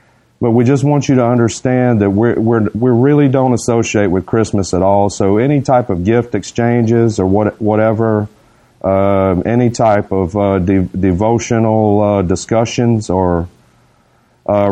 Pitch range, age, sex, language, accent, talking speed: 100-125 Hz, 40-59, male, English, American, 155 wpm